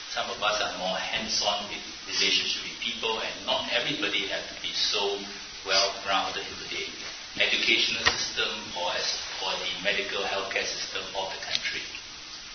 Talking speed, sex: 155 wpm, male